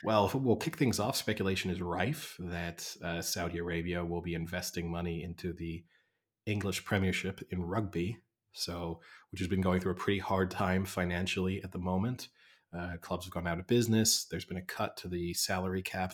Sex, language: male, English